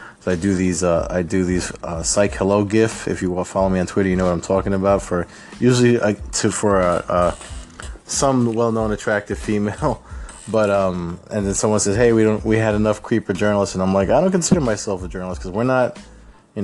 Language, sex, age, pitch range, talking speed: English, male, 20-39, 85-105 Hz, 230 wpm